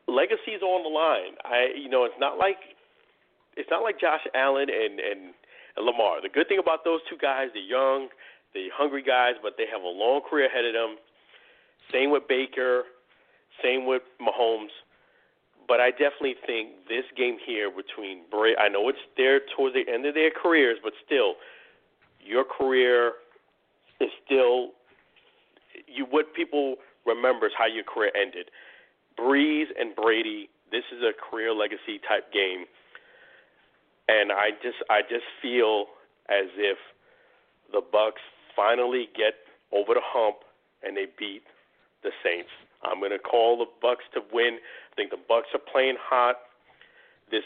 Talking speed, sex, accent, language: 160 wpm, male, American, English